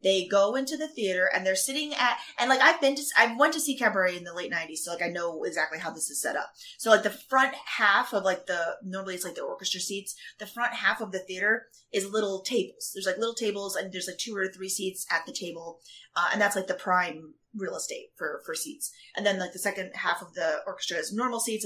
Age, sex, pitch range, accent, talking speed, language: 30-49, female, 190-280 Hz, American, 260 wpm, English